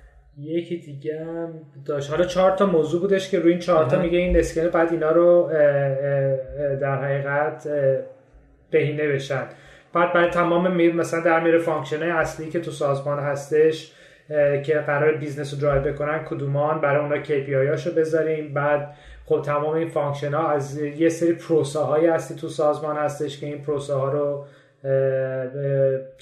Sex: male